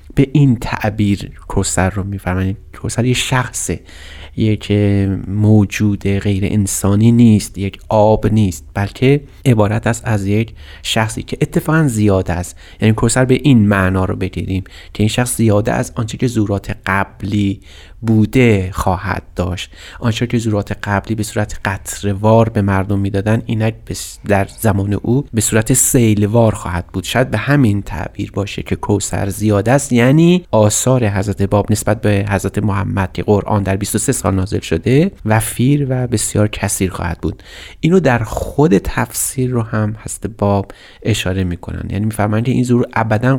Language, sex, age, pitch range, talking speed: Persian, male, 30-49, 100-120 Hz, 160 wpm